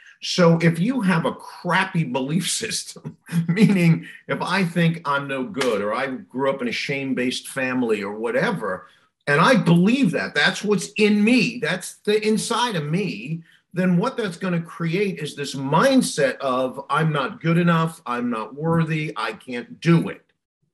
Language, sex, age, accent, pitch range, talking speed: English, male, 50-69, American, 165-220 Hz, 170 wpm